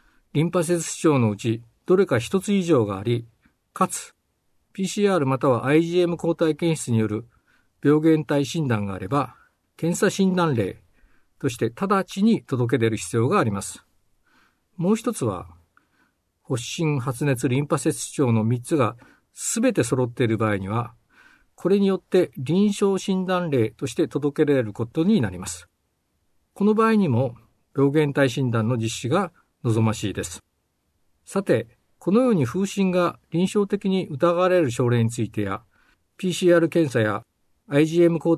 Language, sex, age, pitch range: Japanese, male, 50-69, 110-170 Hz